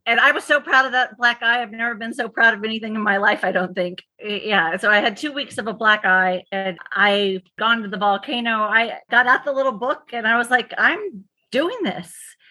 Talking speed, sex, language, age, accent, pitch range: 245 wpm, female, English, 40-59, American, 195-240 Hz